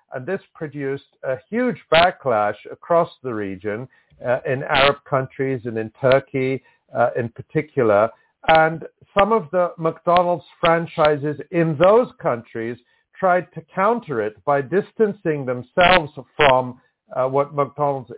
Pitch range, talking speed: 130-175 Hz, 130 wpm